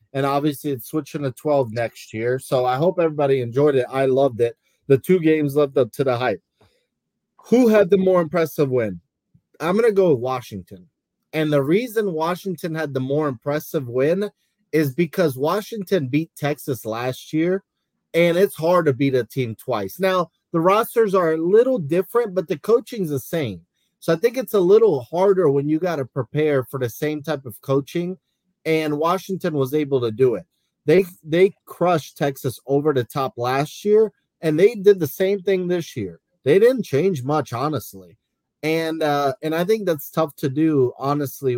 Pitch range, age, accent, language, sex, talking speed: 130-175 Hz, 30-49, American, English, male, 190 wpm